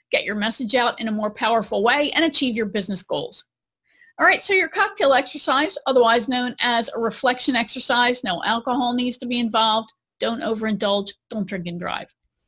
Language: English